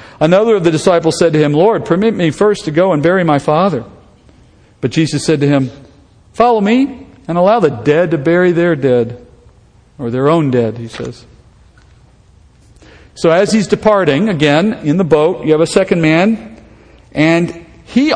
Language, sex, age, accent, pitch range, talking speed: English, male, 50-69, American, 140-190 Hz, 175 wpm